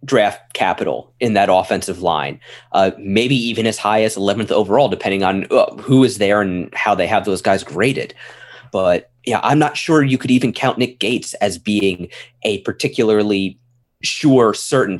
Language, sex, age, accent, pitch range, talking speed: English, male, 30-49, American, 100-130 Hz, 175 wpm